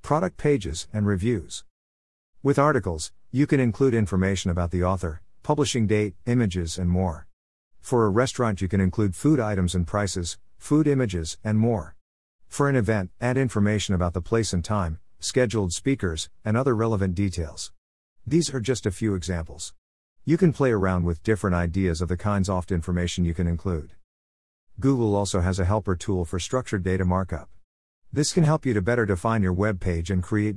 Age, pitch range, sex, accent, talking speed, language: 50-69, 90-110 Hz, male, American, 180 wpm, English